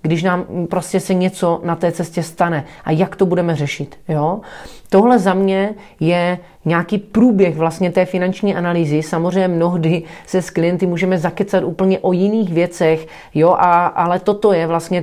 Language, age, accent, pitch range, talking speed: Czech, 30-49, native, 170-195 Hz, 155 wpm